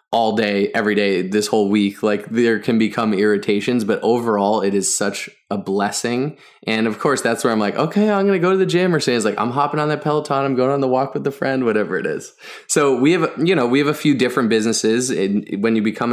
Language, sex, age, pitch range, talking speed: English, male, 20-39, 105-135 Hz, 260 wpm